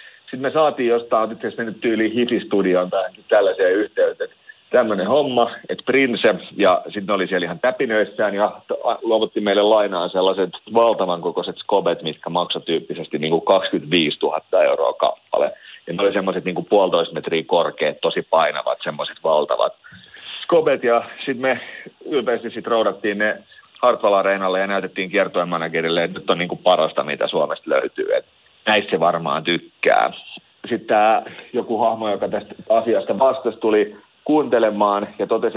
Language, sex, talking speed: Finnish, male, 145 wpm